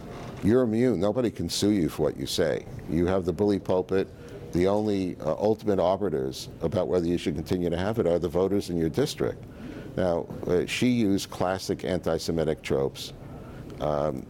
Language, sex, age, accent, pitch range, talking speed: English, male, 60-79, American, 80-105 Hz, 175 wpm